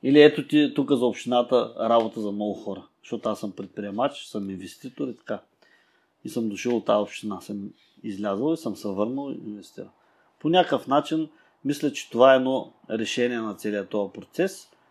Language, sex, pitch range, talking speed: Bulgarian, male, 105-140 Hz, 175 wpm